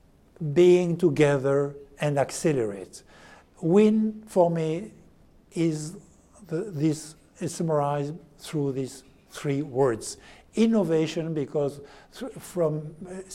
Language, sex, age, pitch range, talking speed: English, male, 60-79, 140-175 Hz, 95 wpm